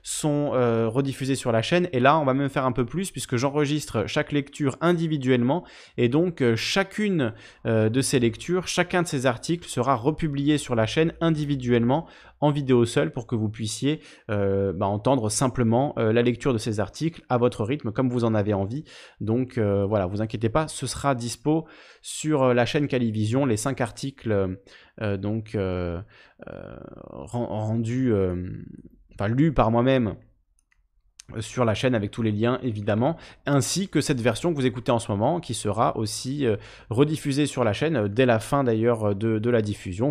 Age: 20-39